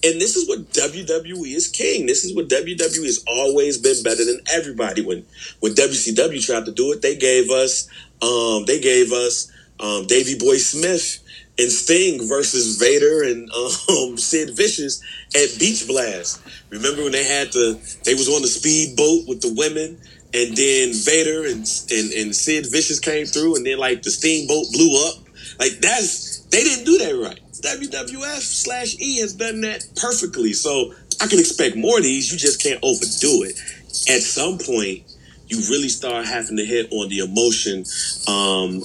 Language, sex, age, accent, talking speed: English, male, 30-49, American, 180 wpm